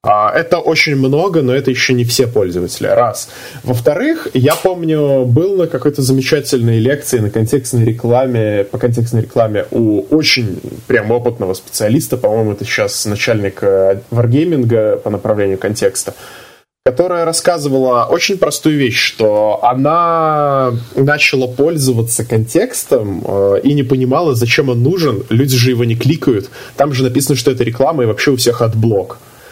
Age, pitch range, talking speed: 20-39, 115-140 Hz, 140 wpm